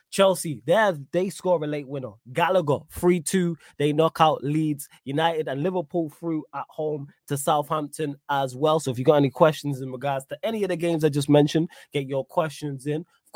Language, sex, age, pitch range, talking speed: English, male, 20-39, 140-170 Hz, 200 wpm